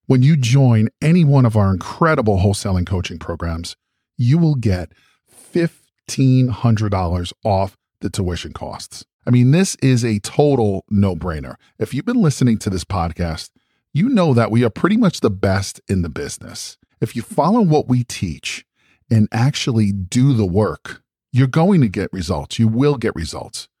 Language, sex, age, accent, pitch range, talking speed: English, male, 40-59, American, 95-130 Hz, 165 wpm